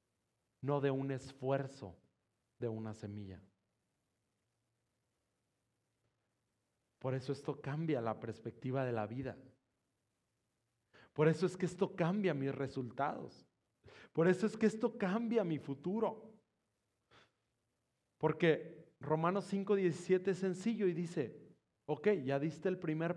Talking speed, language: 115 wpm, Spanish